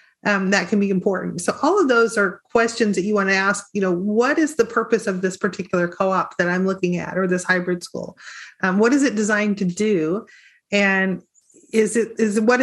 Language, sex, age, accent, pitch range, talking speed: English, female, 30-49, American, 195-240 Hz, 220 wpm